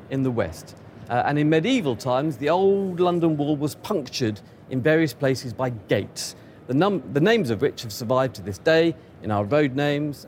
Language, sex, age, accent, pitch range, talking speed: English, male, 40-59, British, 120-160 Hz, 200 wpm